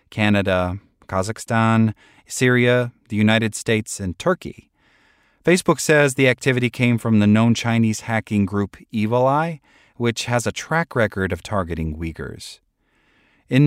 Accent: American